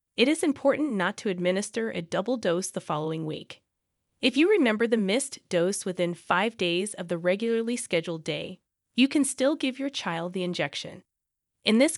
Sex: female